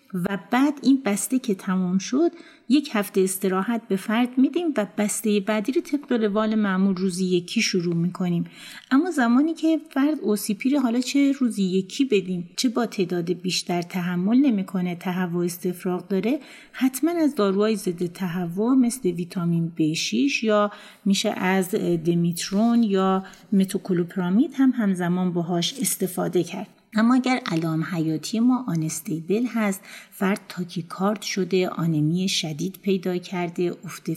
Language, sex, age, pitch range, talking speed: Persian, female, 30-49, 175-230 Hz, 140 wpm